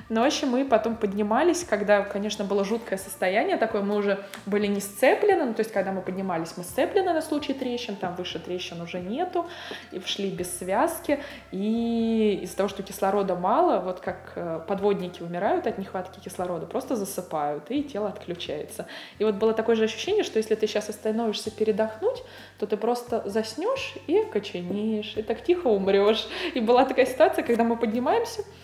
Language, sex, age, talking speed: Russian, female, 20-39, 170 wpm